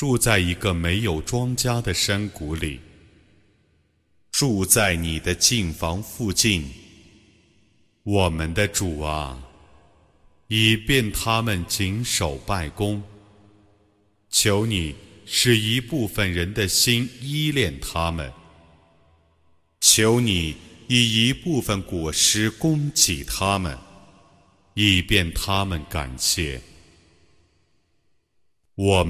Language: Arabic